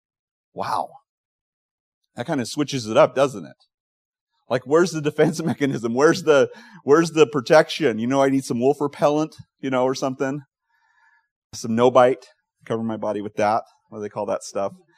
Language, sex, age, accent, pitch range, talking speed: English, male, 30-49, American, 125-160 Hz, 170 wpm